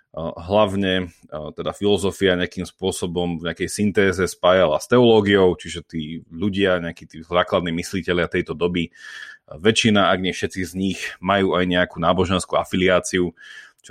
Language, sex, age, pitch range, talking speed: Slovak, male, 30-49, 85-100 Hz, 140 wpm